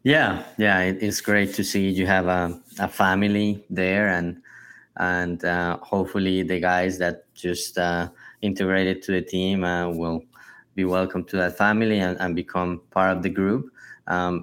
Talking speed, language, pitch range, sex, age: 165 wpm, English, 90-105 Hz, male, 20-39